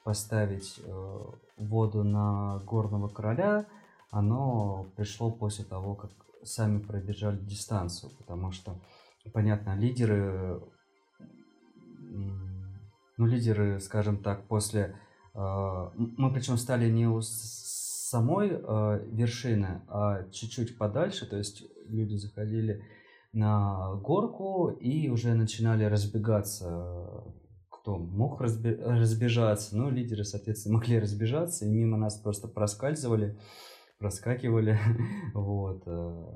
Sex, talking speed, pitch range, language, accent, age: male, 95 wpm, 100-115 Hz, Russian, native, 20-39